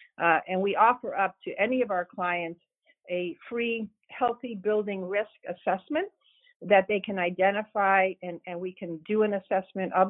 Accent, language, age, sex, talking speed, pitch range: American, English, 50-69, female, 165 wpm, 175-210 Hz